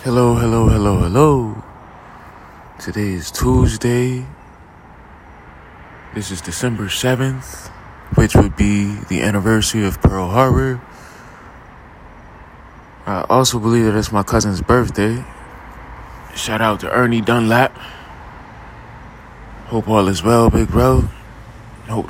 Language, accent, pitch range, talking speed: English, American, 100-120 Hz, 105 wpm